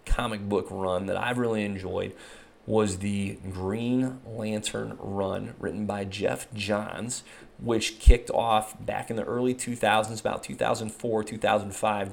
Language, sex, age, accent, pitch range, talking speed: English, male, 30-49, American, 100-115 Hz, 135 wpm